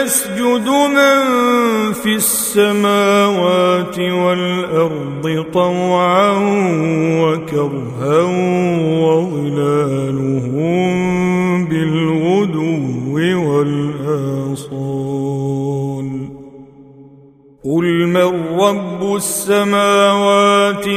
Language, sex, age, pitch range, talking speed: Arabic, male, 50-69, 165-240 Hz, 40 wpm